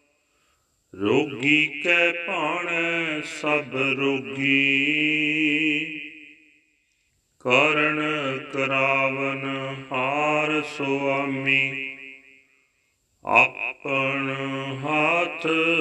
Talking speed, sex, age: 45 wpm, male, 40-59